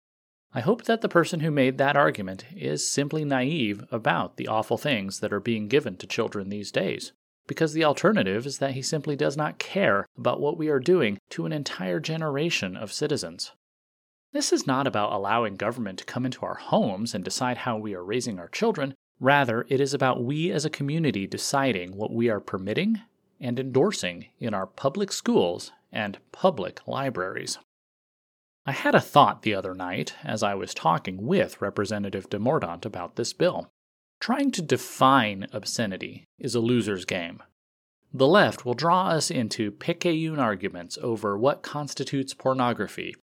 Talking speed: 170 wpm